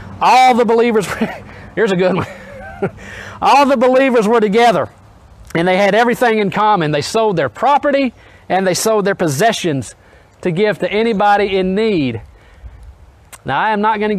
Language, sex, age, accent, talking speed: English, male, 40-59, American, 165 wpm